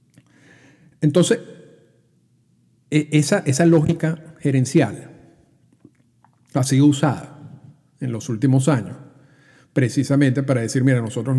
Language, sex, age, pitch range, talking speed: Spanish, male, 50-69, 130-150 Hz, 90 wpm